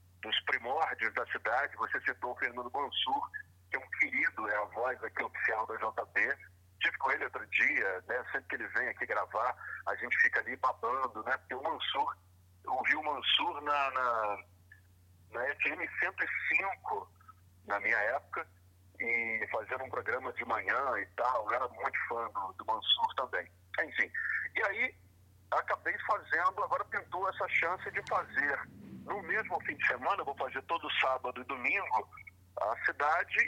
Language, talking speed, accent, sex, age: Portuguese, 170 wpm, Brazilian, male, 40-59